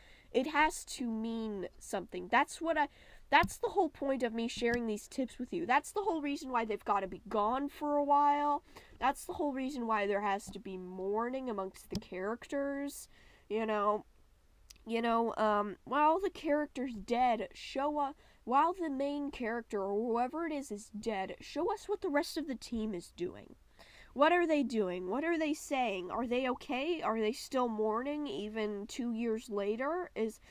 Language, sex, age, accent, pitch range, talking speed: English, female, 10-29, American, 215-285 Hz, 190 wpm